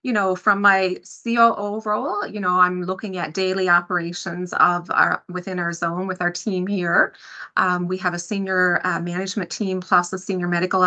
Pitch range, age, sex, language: 180-210 Hz, 30-49, female, English